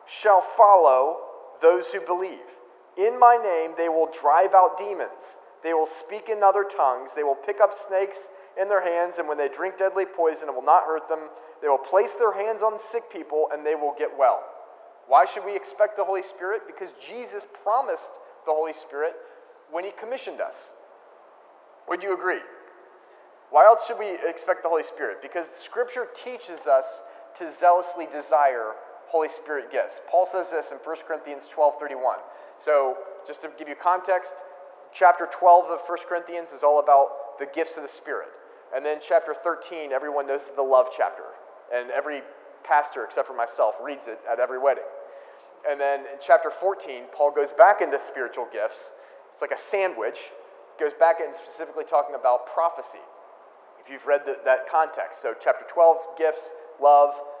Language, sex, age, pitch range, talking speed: English, male, 30-49, 150-195 Hz, 175 wpm